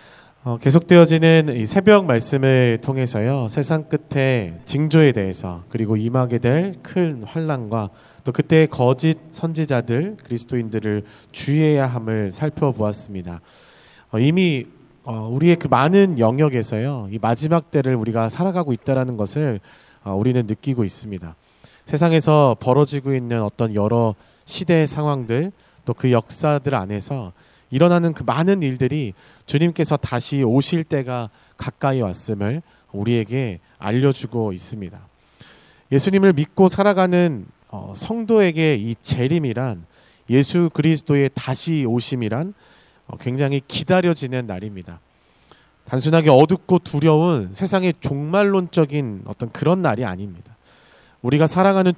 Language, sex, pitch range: Korean, male, 115-160 Hz